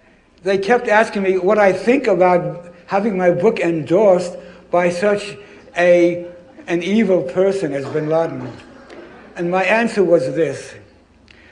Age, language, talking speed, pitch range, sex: 60-79, English, 130 wpm, 165-195 Hz, male